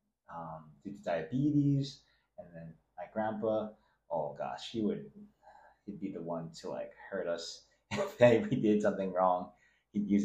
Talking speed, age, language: 160 wpm, 30-49, English